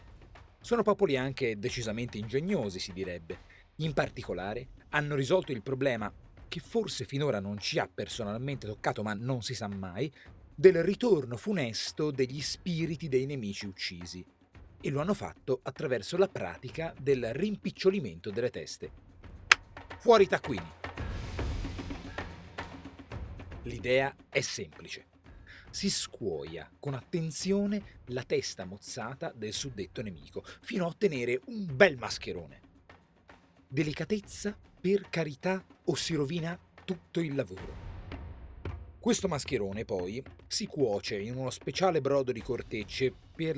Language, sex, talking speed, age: Italian, male, 120 wpm, 40-59